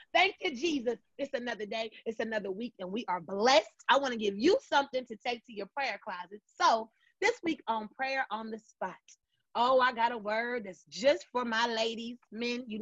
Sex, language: female, English